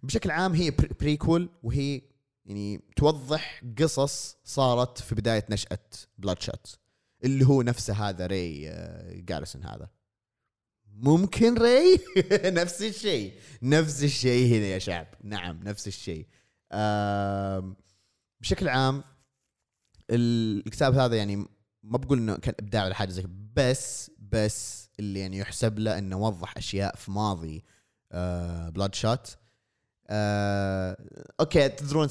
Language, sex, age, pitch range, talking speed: Arabic, male, 20-39, 100-125 Hz, 110 wpm